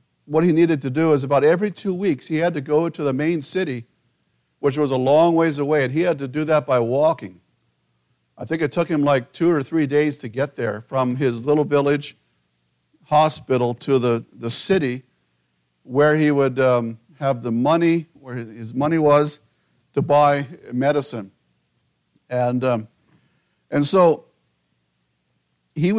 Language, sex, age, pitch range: English, male, 50-69, 115-155 Hz